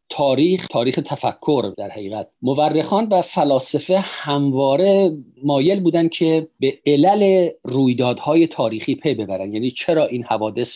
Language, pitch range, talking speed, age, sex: Persian, 120-155 Hz, 125 wpm, 50-69, male